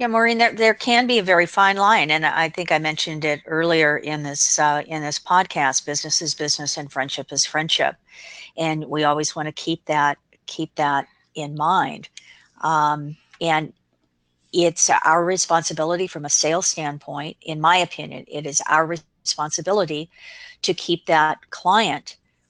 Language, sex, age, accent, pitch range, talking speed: English, female, 50-69, American, 155-175 Hz, 165 wpm